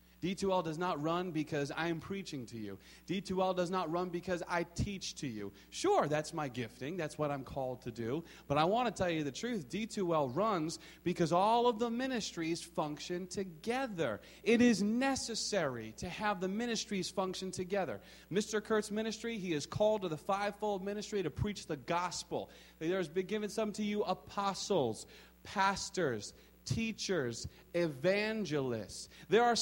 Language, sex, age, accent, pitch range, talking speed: English, male, 30-49, American, 150-220 Hz, 165 wpm